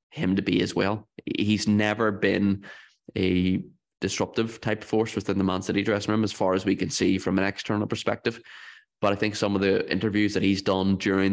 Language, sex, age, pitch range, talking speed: English, male, 20-39, 95-105 Hz, 205 wpm